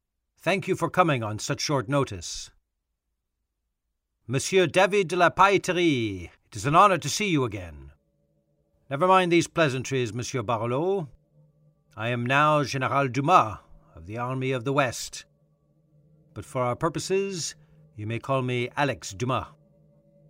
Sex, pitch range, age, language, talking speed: male, 95-150 Hz, 50-69, English, 140 wpm